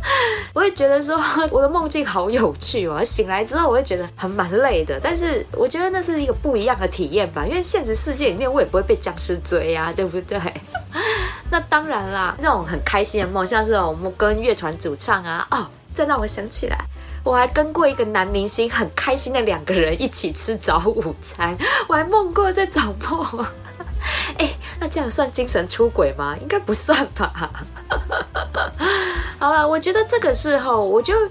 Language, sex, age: Chinese, female, 20-39